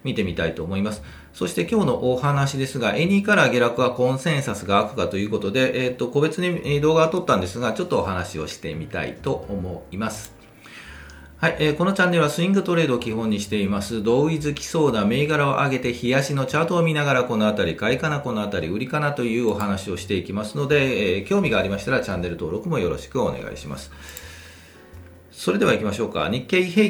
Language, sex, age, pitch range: Japanese, male, 40-59, 100-150 Hz